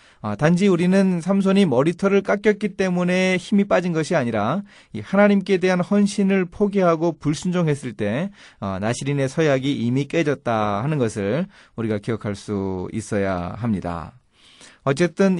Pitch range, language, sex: 120-180 Hz, Korean, male